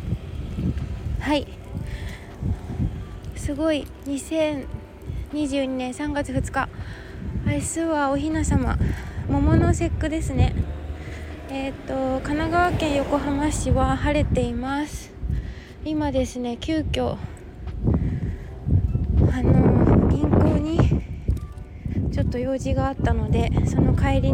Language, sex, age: Japanese, female, 20-39